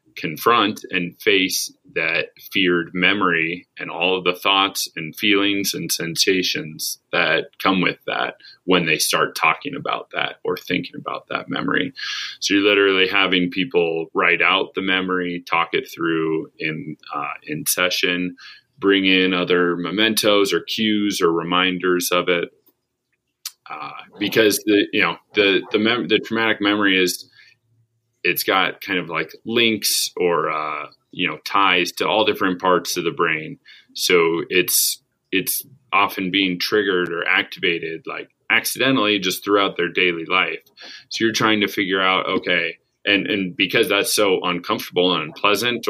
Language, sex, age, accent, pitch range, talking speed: English, male, 30-49, American, 90-110 Hz, 150 wpm